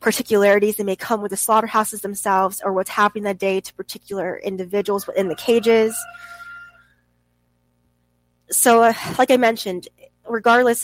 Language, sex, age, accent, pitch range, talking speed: English, female, 20-39, American, 175-215 Hz, 140 wpm